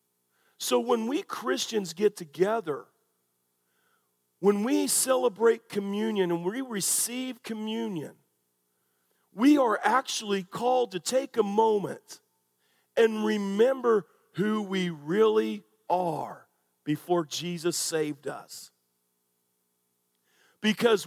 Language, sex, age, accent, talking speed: English, male, 40-59, American, 95 wpm